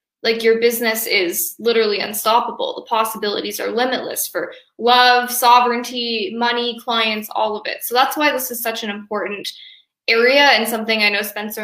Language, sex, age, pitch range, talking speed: English, female, 10-29, 210-255 Hz, 165 wpm